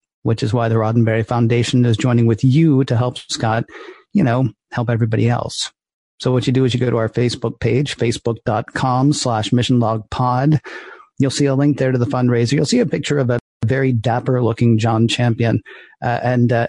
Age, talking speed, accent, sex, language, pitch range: 40-59, 200 wpm, American, male, English, 115-130 Hz